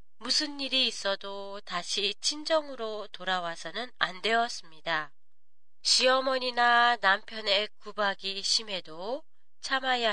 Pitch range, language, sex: 190-250 Hz, Japanese, female